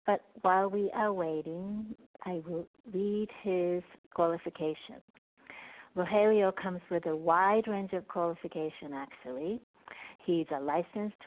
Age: 60-79